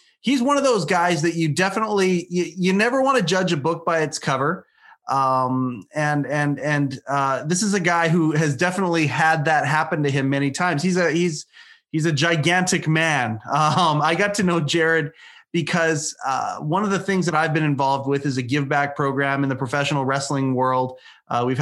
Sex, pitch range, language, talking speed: male, 130-170 Hz, English, 205 wpm